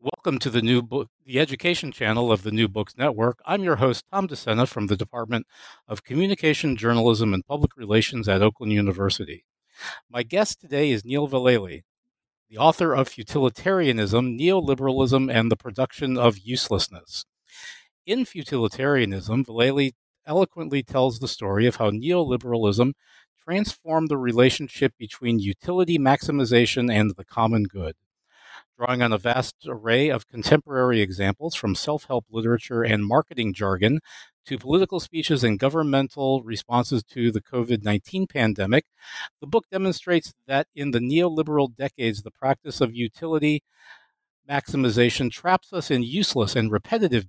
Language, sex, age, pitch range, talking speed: English, male, 50-69, 115-150 Hz, 140 wpm